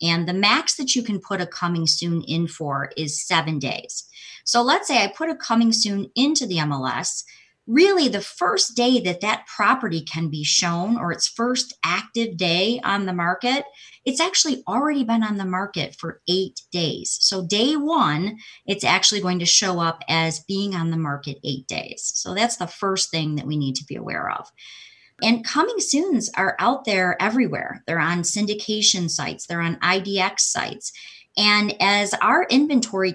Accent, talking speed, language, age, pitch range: American, 185 wpm, English, 30-49, 175-245 Hz